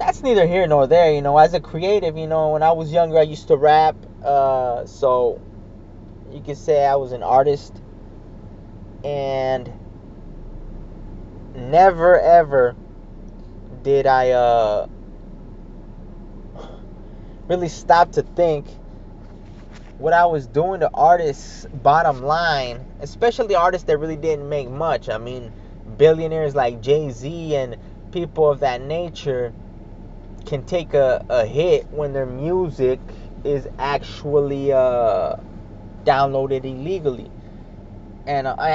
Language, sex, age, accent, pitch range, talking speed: English, male, 20-39, American, 110-170 Hz, 120 wpm